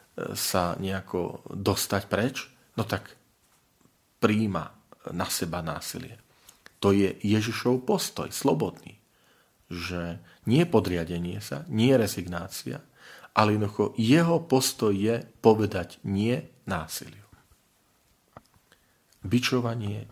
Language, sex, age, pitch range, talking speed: Slovak, male, 40-59, 90-120 Hz, 90 wpm